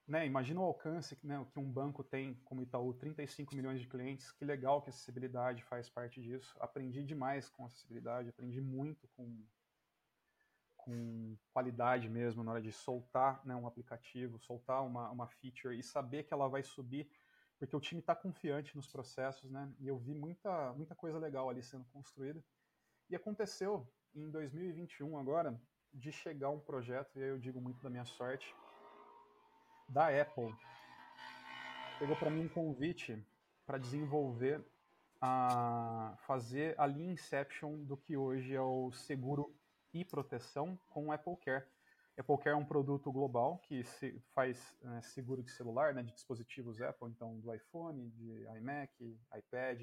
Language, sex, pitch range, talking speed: Portuguese, male, 125-145 Hz, 160 wpm